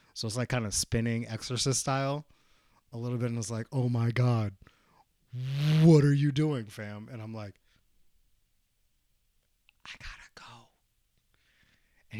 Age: 30-49